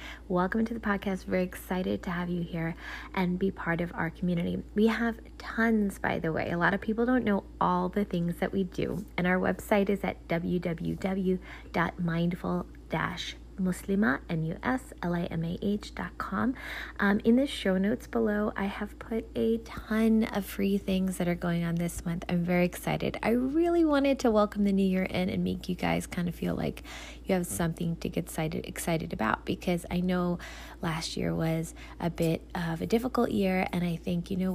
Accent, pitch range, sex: American, 175-215 Hz, female